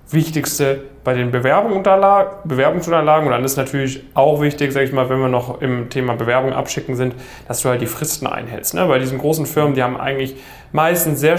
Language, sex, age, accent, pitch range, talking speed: German, male, 10-29, German, 130-155 Hz, 190 wpm